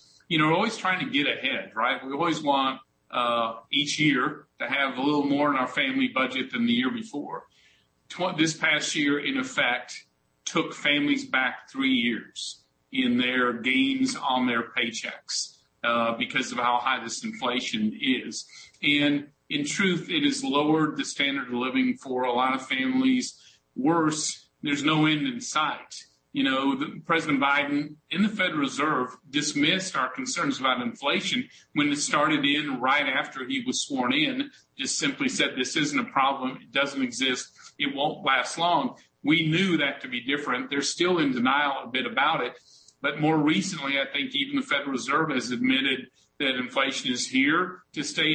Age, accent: 40-59, American